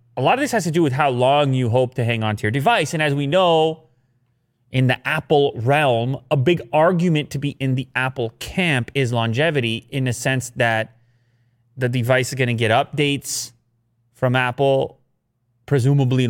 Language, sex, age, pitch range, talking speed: English, male, 30-49, 120-145 Hz, 190 wpm